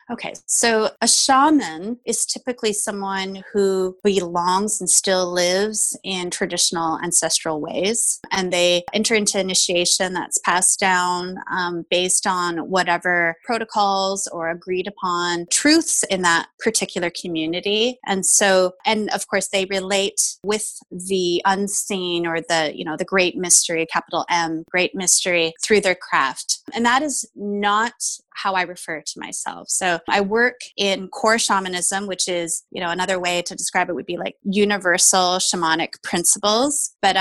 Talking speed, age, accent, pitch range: 150 wpm, 20-39, American, 175-205 Hz